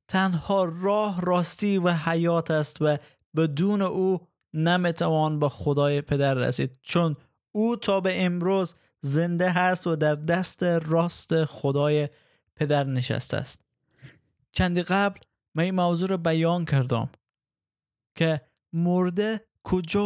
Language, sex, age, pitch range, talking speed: Persian, male, 20-39, 145-175 Hz, 120 wpm